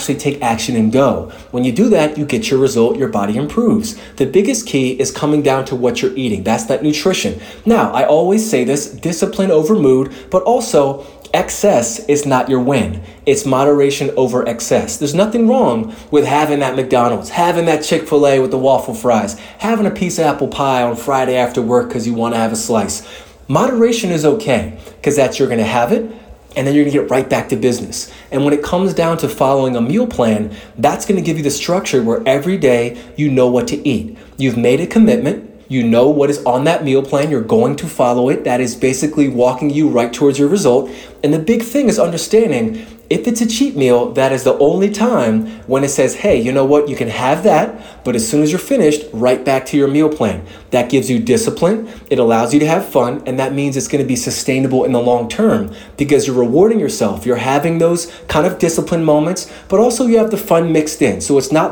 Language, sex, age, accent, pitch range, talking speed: English, male, 20-39, American, 130-180 Hz, 225 wpm